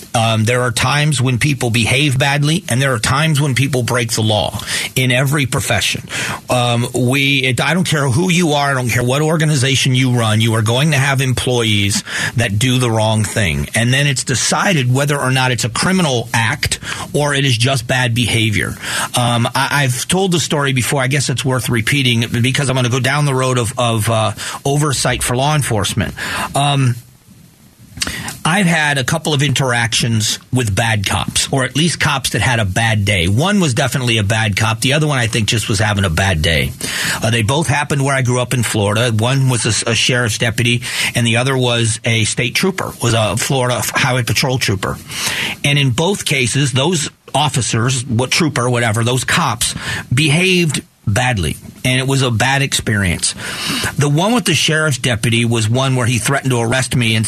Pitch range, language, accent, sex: 115-140 Hz, English, American, male